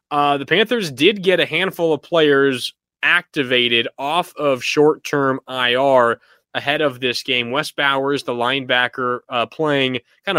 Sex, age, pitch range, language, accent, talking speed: male, 20-39, 120-145 Hz, English, American, 145 wpm